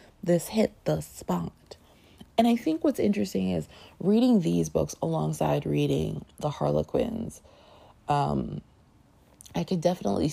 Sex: female